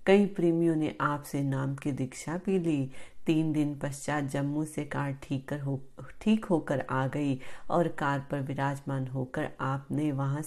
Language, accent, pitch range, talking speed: Hindi, native, 140-170 Hz, 145 wpm